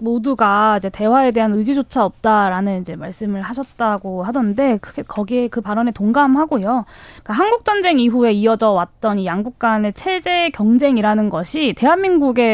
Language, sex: Korean, female